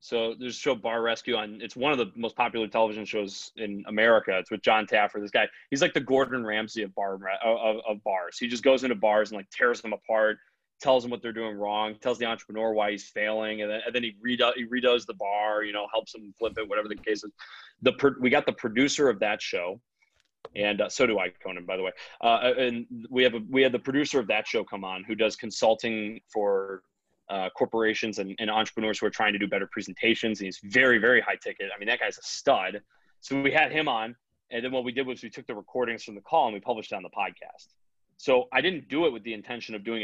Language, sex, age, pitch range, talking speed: English, male, 20-39, 105-125 Hz, 255 wpm